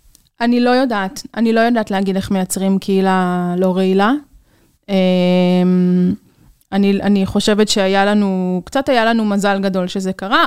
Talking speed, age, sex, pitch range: 140 wpm, 20-39, female, 190-235 Hz